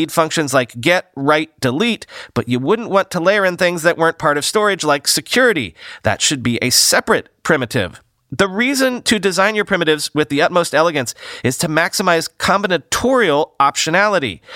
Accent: American